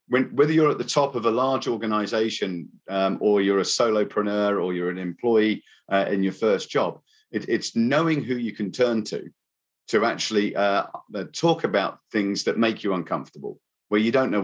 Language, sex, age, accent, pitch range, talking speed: English, male, 40-59, British, 105-130 Hz, 185 wpm